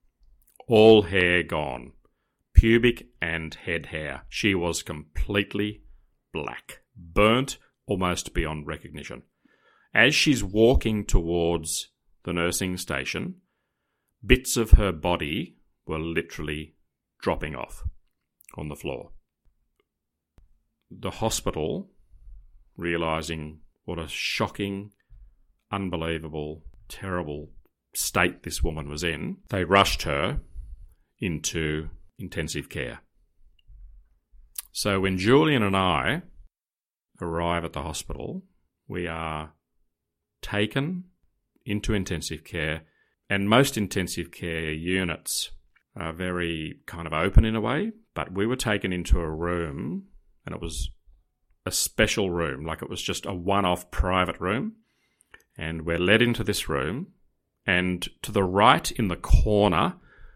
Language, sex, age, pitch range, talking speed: English, male, 40-59, 80-100 Hz, 115 wpm